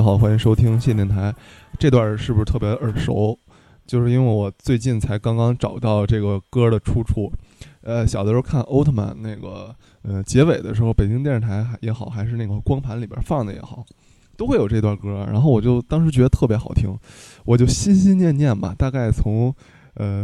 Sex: male